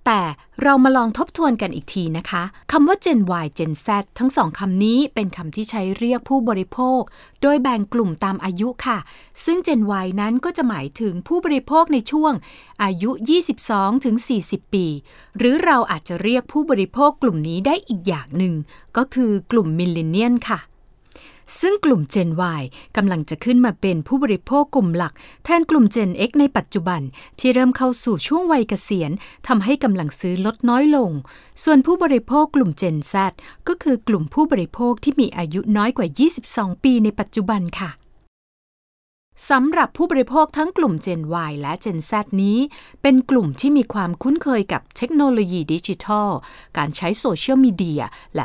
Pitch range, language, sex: 185-270 Hz, Thai, female